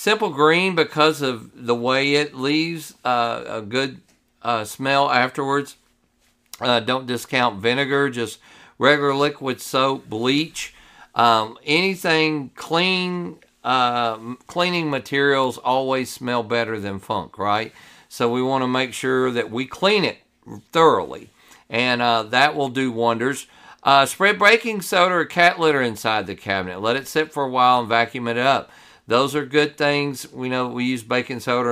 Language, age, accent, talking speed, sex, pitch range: English, 50-69, American, 155 wpm, male, 120-150 Hz